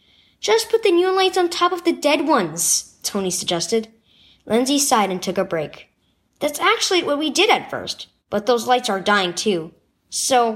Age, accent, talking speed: 10-29, American, 190 wpm